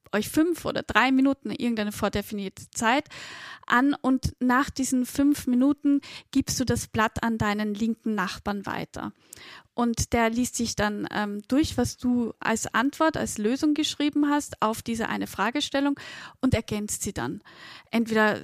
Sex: female